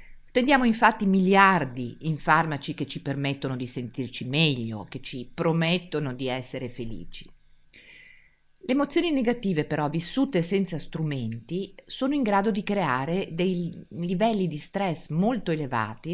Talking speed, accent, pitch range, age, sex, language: 130 wpm, native, 140-195 Hz, 50-69, female, Italian